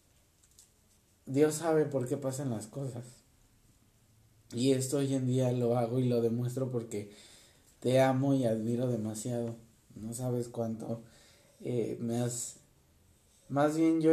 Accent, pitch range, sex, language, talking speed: Mexican, 110-130 Hz, male, Spanish, 135 wpm